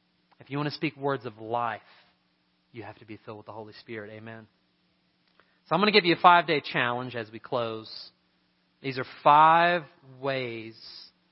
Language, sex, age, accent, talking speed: English, male, 30-49, American, 180 wpm